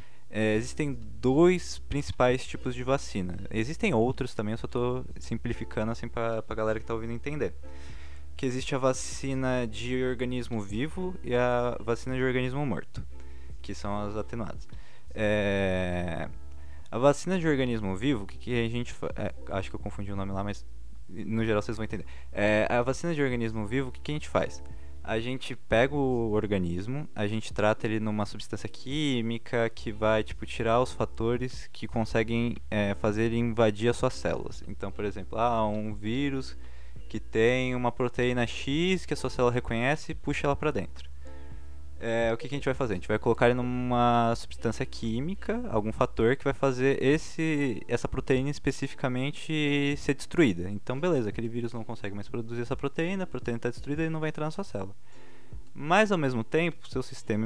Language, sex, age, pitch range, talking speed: Portuguese, male, 20-39, 105-135 Hz, 185 wpm